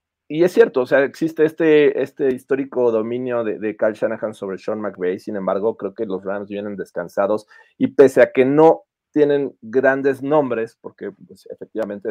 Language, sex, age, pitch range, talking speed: Spanish, male, 30-49, 115-175 Hz, 180 wpm